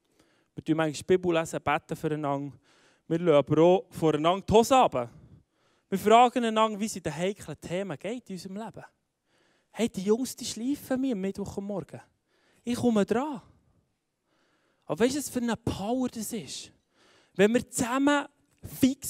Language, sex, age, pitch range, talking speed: German, male, 20-39, 175-245 Hz, 165 wpm